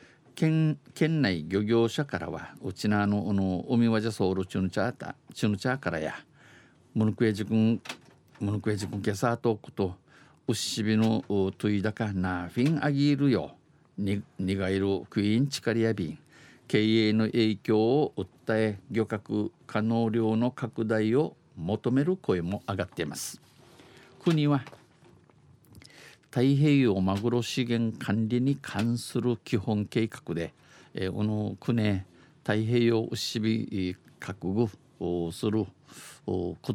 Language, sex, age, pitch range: Japanese, male, 50-69, 95-120 Hz